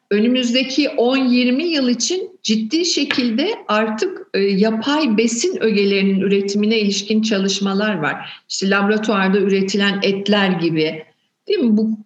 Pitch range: 210-265 Hz